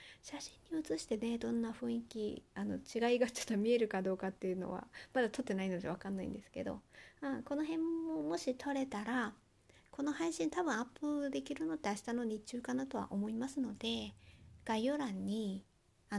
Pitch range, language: 175-255 Hz, Japanese